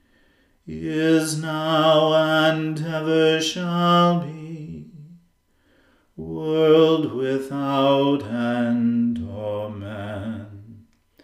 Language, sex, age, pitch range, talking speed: English, male, 40-59, 130-155 Hz, 55 wpm